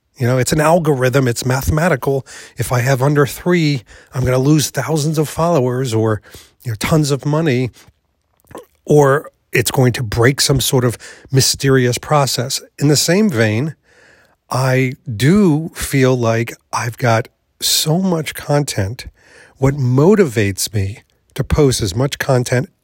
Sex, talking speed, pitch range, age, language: male, 145 wpm, 110-145 Hz, 40-59, English